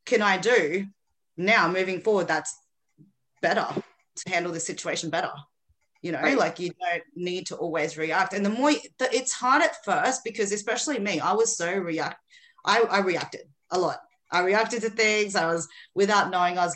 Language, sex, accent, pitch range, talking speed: English, female, Australian, 170-220 Hz, 185 wpm